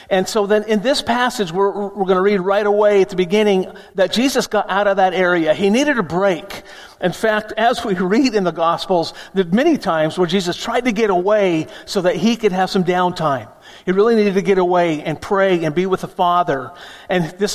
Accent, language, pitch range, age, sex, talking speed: American, English, 180-215 Hz, 50-69, male, 225 wpm